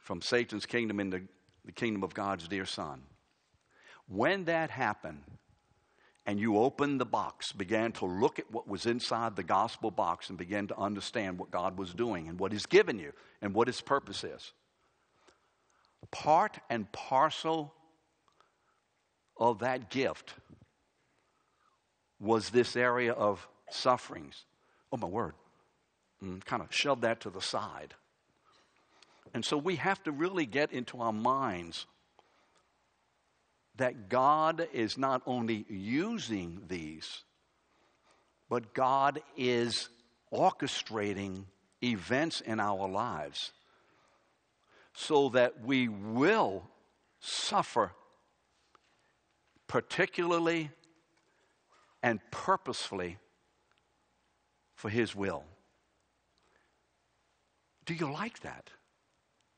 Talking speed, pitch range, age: 110 wpm, 100-135 Hz, 60-79